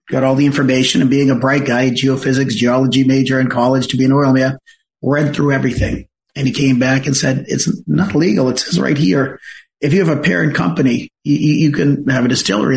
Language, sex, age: English, male, 40-59